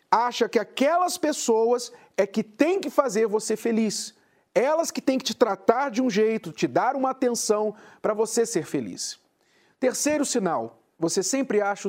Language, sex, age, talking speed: Portuguese, male, 40-59, 165 wpm